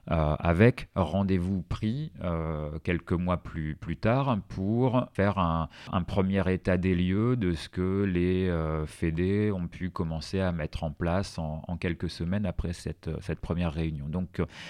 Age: 40-59